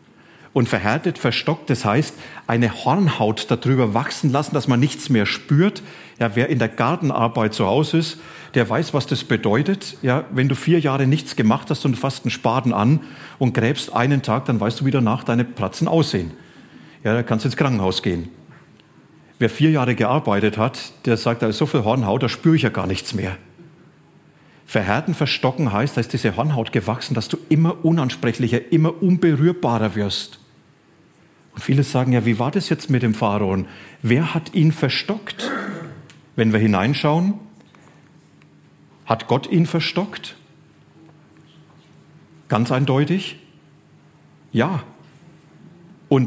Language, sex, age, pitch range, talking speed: German, male, 40-59, 115-155 Hz, 155 wpm